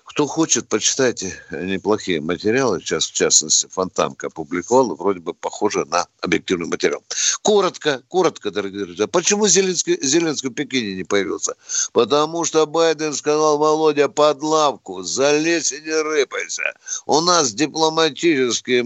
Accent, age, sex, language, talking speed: native, 60-79, male, Russian, 125 wpm